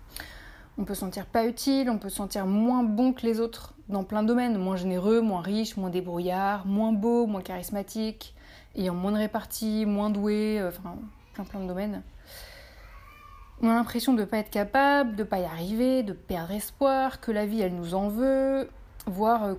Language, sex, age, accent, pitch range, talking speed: French, female, 20-39, French, 190-235 Hz, 200 wpm